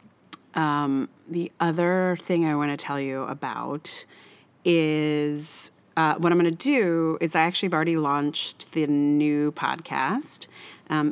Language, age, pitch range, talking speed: English, 30-49, 140-170 Hz, 140 wpm